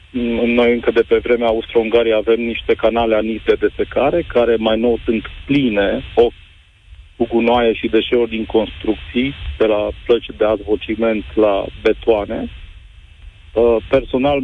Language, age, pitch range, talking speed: Romanian, 40-59, 110-125 Hz, 130 wpm